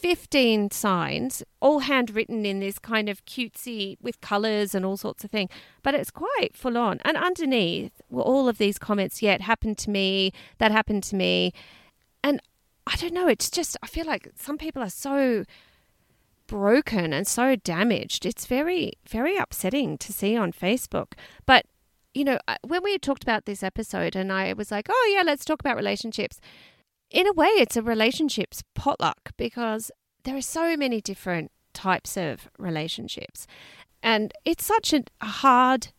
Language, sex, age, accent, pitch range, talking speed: English, female, 30-49, Australian, 200-275 Hz, 170 wpm